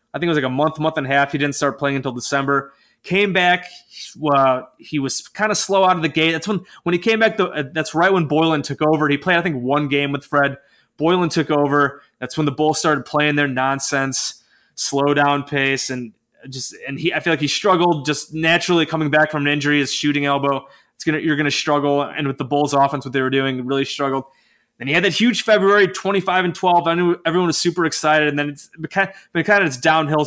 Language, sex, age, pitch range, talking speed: English, male, 20-39, 140-175 Hz, 250 wpm